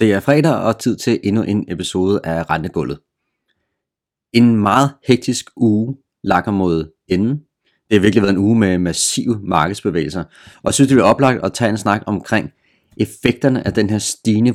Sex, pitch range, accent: male, 90-120 Hz, native